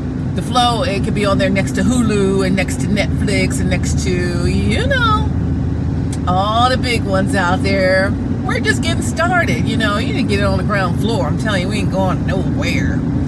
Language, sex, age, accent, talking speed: English, female, 30-49, American, 210 wpm